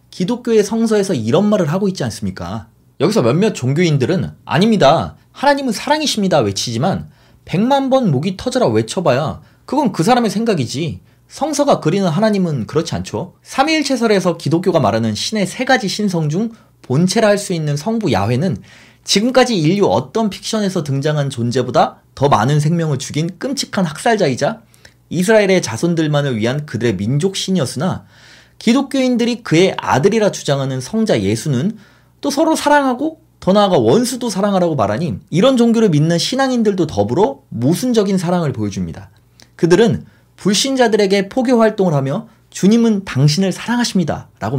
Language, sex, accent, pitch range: Korean, male, native, 140-225 Hz